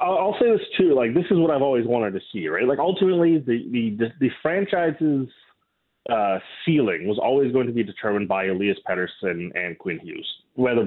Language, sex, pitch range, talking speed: English, male, 105-130 Hz, 195 wpm